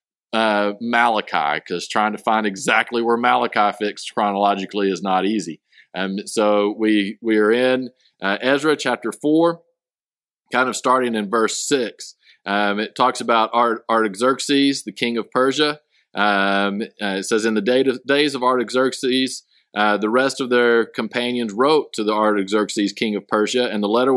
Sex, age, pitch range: male, 40-59, 105-130 Hz